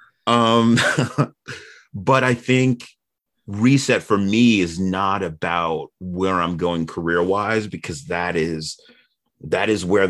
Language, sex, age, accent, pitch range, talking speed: English, male, 30-49, American, 85-105 Hz, 125 wpm